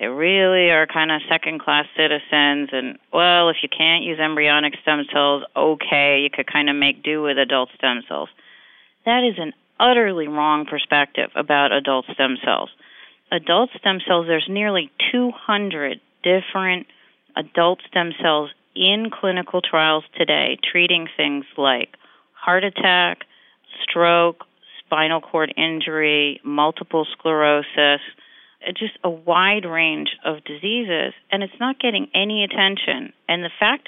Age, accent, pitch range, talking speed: 40-59, American, 155-200 Hz, 135 wpm